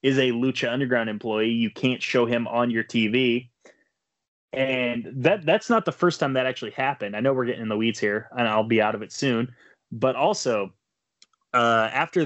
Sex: male